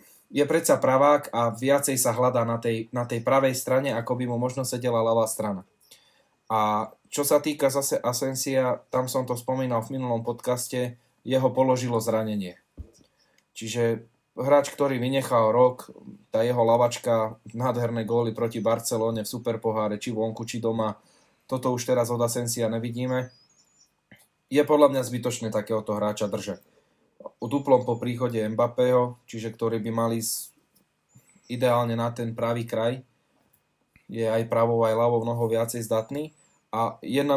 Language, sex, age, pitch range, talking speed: Slovak, male, 20-39, 115-130 Hz, 150 wpm